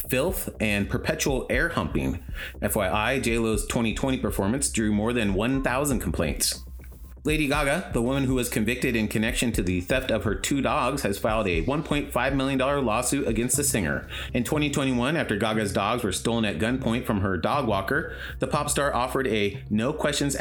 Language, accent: English, American